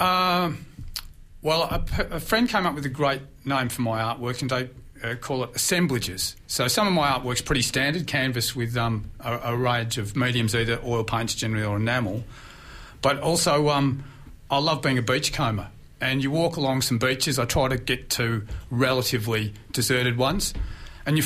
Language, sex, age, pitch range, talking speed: English, male, 40-59, 115-140 Hz, 185 wpm